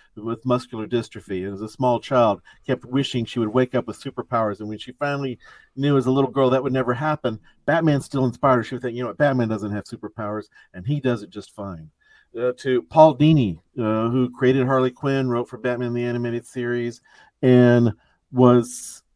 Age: 50-69